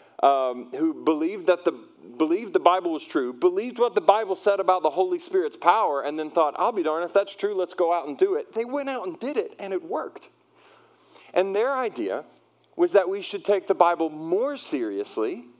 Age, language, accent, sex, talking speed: 40-59, English, American, male, 230 wpm